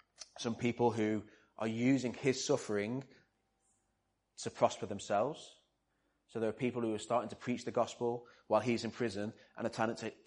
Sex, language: male, English